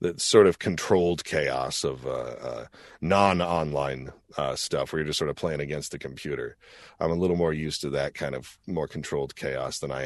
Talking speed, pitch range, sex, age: 195 wpm, 75-95 Hz, male, 40-59